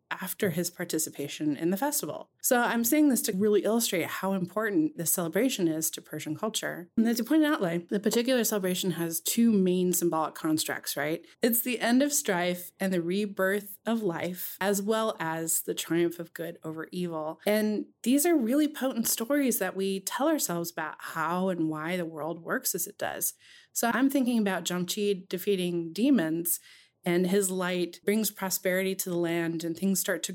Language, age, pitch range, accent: English, 20-39, 165-215 Hz, American